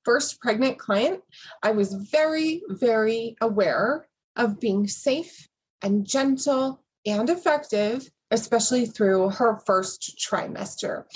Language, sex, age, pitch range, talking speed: English, female, 20-39, 205-255 Hz, 110 wpm